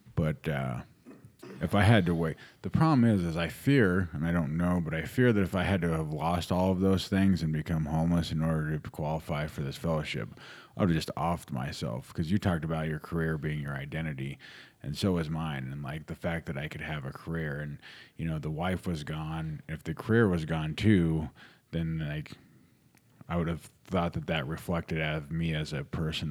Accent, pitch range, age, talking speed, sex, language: American, 75-85 Hz, 30-49, 220 wpm, male, English